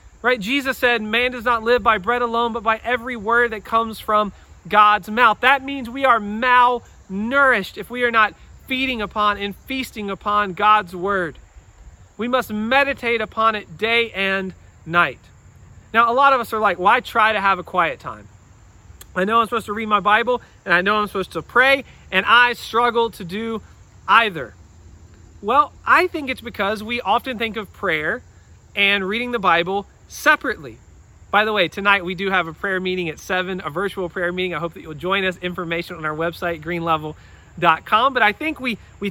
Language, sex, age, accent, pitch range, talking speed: English, male, 40-59, American, 180-240 Hz, 195 wpm